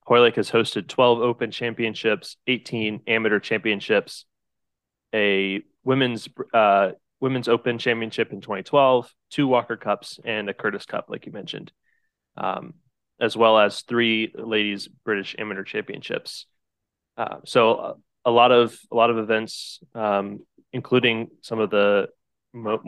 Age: 20-39